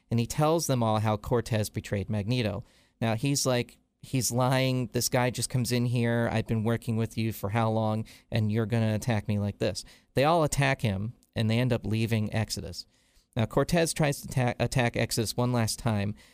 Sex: male